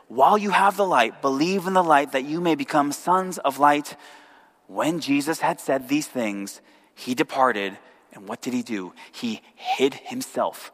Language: English